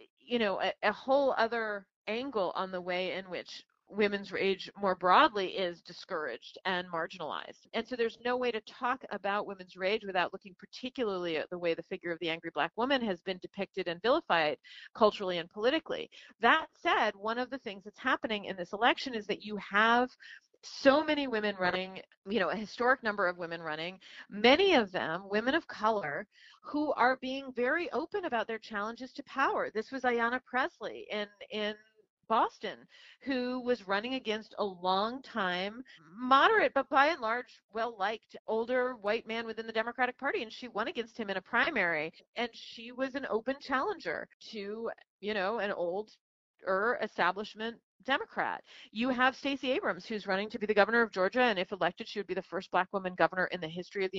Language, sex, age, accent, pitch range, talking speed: English, female, 40-59, American, 195-255 Hz, 185 wpm